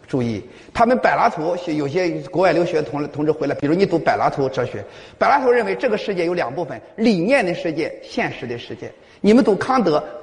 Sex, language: male, Chinese